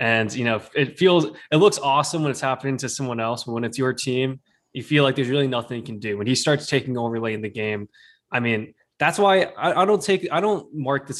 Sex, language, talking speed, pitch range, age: male, English, 265 wpm, 115-140 Hz, 10-29